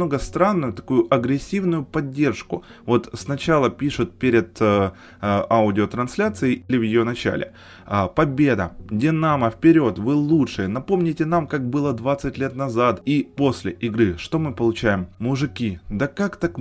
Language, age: Ukrainian, 20-39